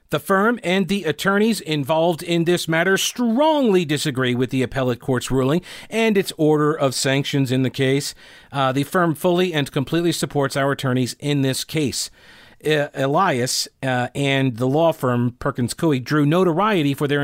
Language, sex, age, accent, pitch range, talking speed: English, male, 40-59, American, 135-175 Hz, 165 wpm